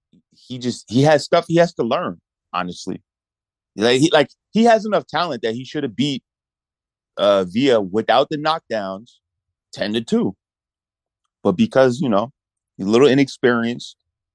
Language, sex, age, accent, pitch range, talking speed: English, male, 30-49, American, 105-145 Hz, 160 wpm